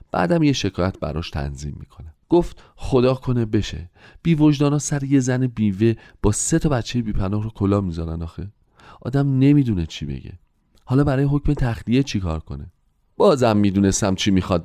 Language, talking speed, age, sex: Persian, 165 wpm, 30-49, male